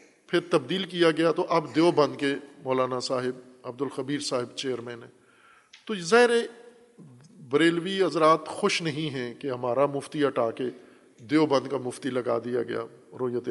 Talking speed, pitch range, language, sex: 150 wpm, 135-185 Hz, Urdu, male